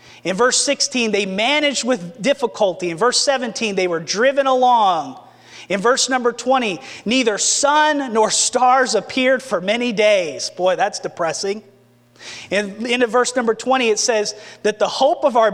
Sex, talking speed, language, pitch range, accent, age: male, 160 wpm, English, 200-255 Hz, American, 30-49